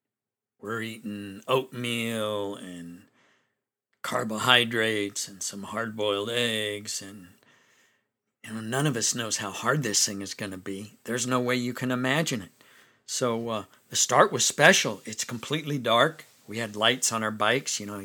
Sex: male